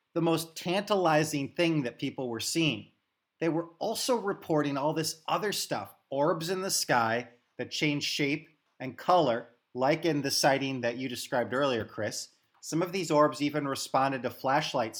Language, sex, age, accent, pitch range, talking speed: English, male, 30-49, American, 125-160 Hz, 170 wpm